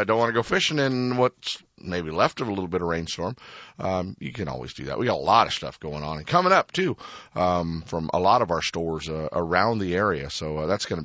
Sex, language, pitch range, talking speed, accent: male, English, 85-115 Hz, 270 wpm, American